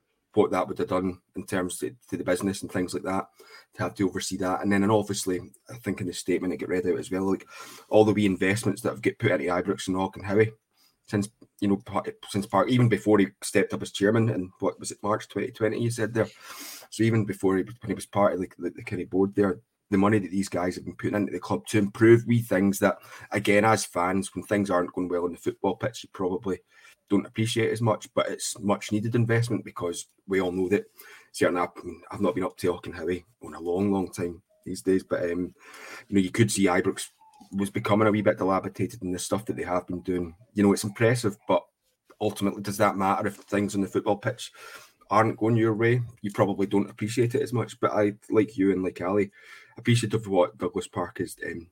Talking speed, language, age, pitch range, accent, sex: 245 wpm, English, 20-39, 95-110 Hz, British, male